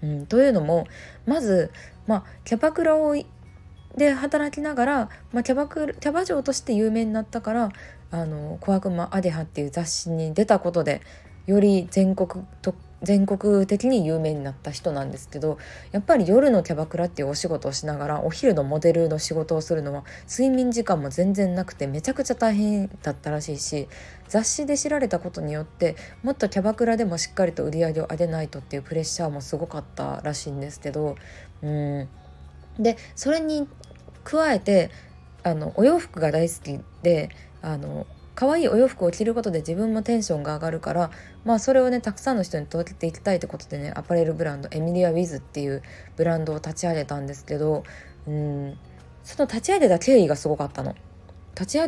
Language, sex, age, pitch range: Japanese, female, 20-39, 150-220 Hz